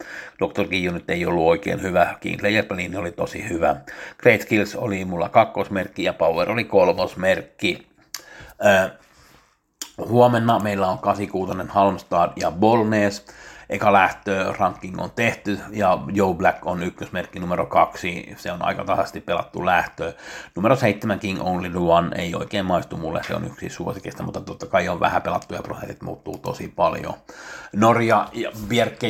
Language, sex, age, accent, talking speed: Finnish, male, 60-79, native, 150 wpm